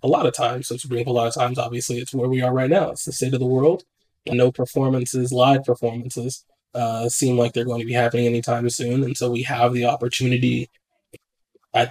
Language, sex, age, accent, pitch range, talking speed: English, male, 20-39, American, 120-125 Hz, 225 wpm